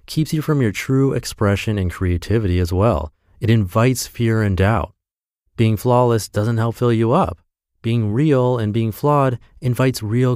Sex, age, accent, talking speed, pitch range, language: male, 30-49, American, 170 wpm, 90-125 Hz, English